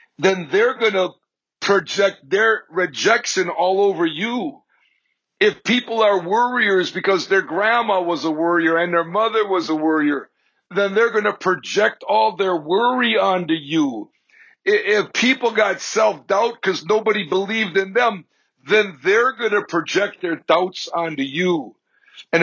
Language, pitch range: English, 165-220 Hz